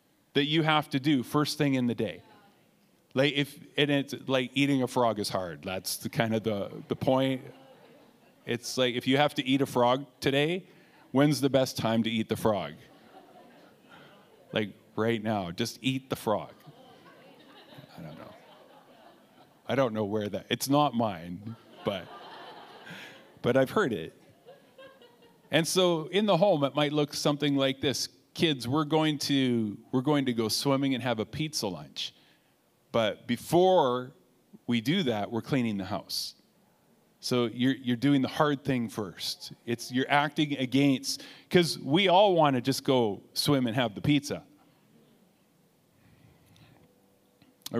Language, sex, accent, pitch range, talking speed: English, male, American, 115-145 Hz, 160 wpm